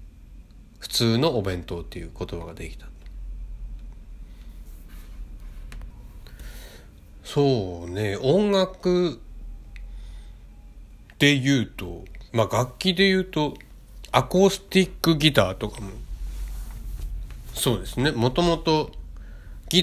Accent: native